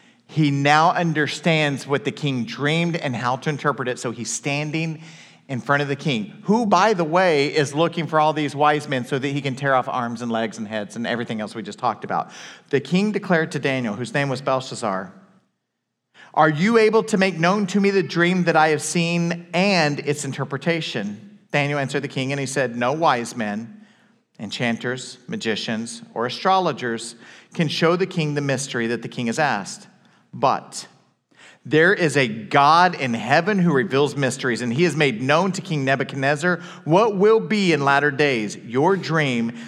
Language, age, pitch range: English, 40-59, 135-200 Hz